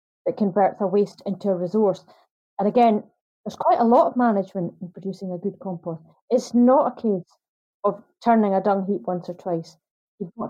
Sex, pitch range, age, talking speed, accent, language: female, 185-220 Hz, 30-49, 195 wpm, British, English